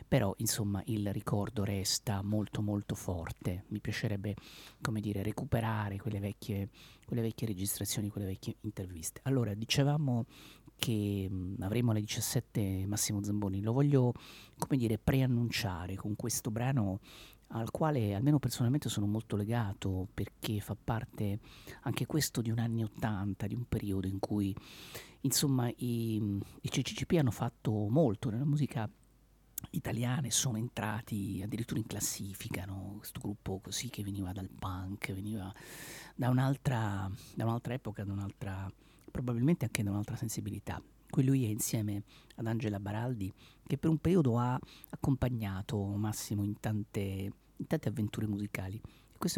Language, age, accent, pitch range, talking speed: Italian, 40-59, native, 100-125 Hz, 135 wpm